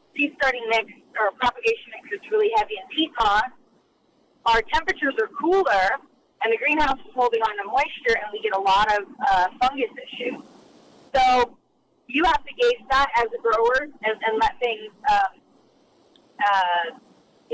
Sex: female